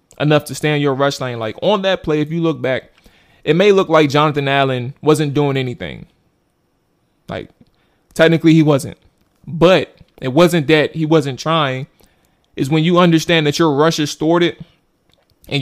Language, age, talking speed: English, 20-39, 170 wpm